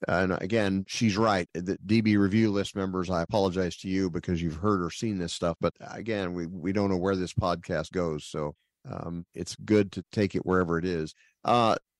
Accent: American